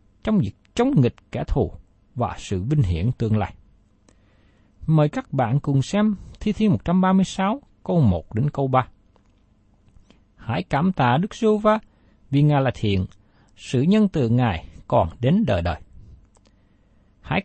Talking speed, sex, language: 150 wpm, male, Vietnamese